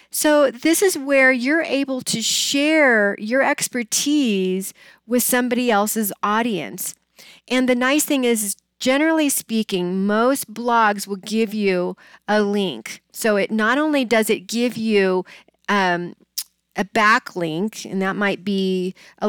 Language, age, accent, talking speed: English, 40-59, American, 135 wpm